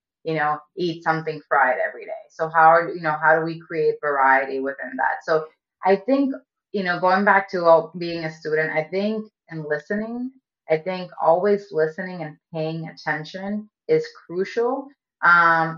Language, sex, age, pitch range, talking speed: English, female, 20-39, 155-185 Hz, 170 wpm